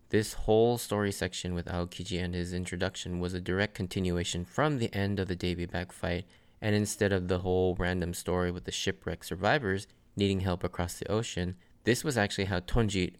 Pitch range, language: 90-110 Hz, English